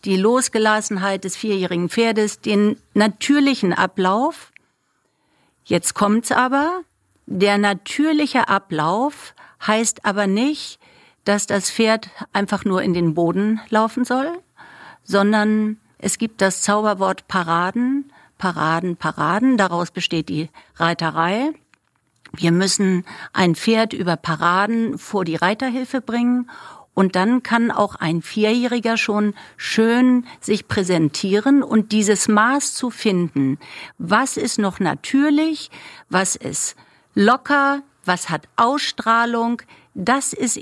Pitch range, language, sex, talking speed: 185-235 Hz, German, female, 110 wpm